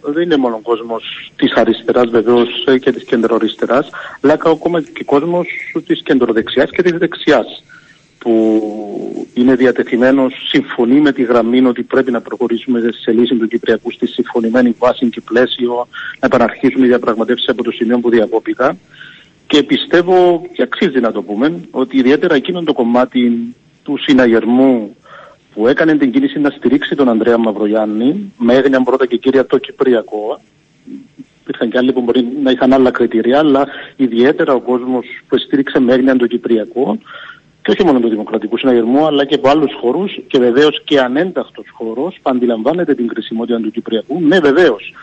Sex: male